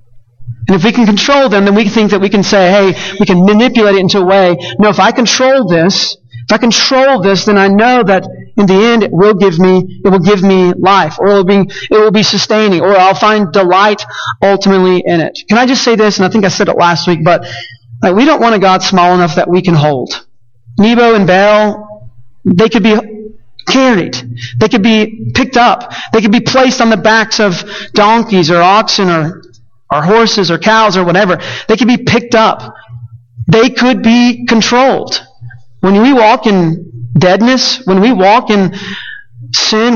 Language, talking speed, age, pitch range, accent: English, 205 wpm, 40-59, 180-225 Hz, American